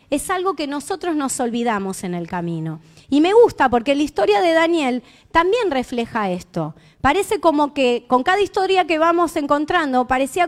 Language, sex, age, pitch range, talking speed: Spanish, female, 30-49, 240-365 Hz, 170 wpm